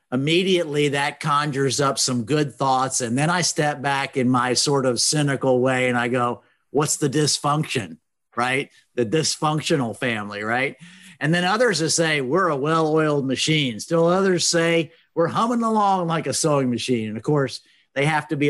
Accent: American